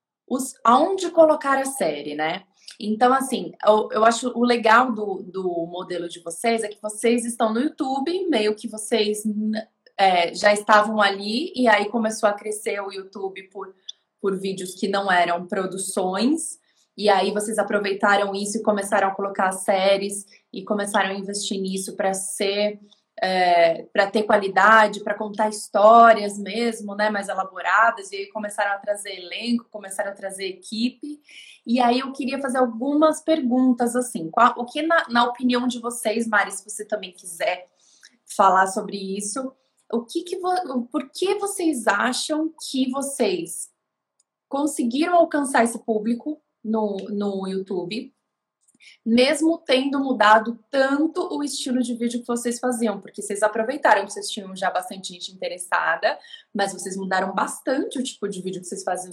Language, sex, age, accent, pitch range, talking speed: Portuguese, female, 20-39, Brazilian, 200-255 Hz, 155 wpm